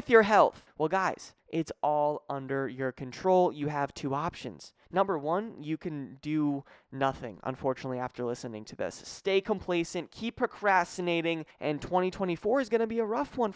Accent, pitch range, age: American, 150-220 Hz, 20-39